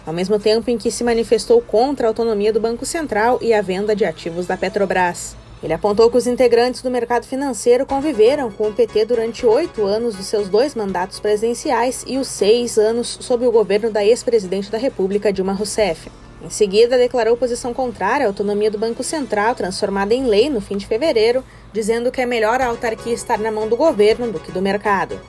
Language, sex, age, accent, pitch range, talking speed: Portuguese, female, 20-39, Brazilian, 210-255 Hz, 200 wpm